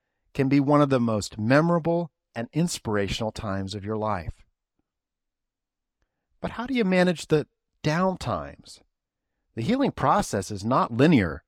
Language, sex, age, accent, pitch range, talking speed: English, male, 50-69, American, 105-160 Hz, 140 wpm